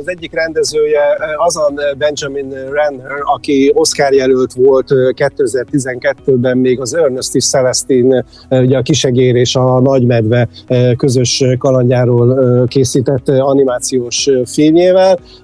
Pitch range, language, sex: 130-150 Hz, Hungarian, male